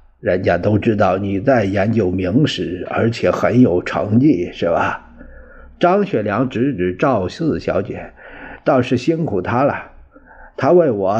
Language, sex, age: Chinese, male, 50-69